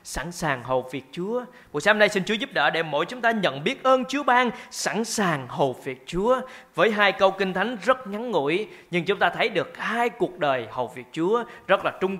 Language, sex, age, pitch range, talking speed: Vietnamese, male, 20-39, 170-260 Hz, 235 wpm